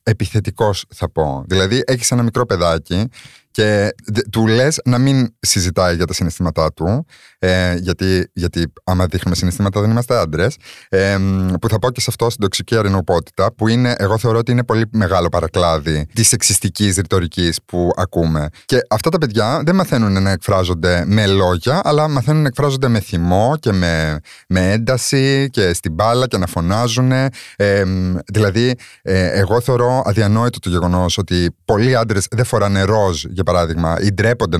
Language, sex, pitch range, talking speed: Greek, male, 90-120 Hz, 160 wpm